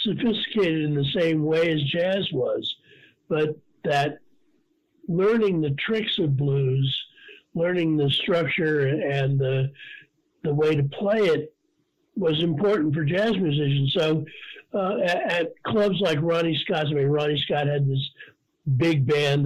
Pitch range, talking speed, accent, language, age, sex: 140-205 Hz, 140 wpm, American, English, 50-69, male